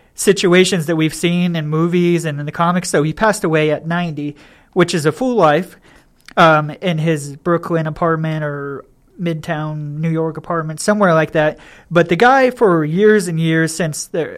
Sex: male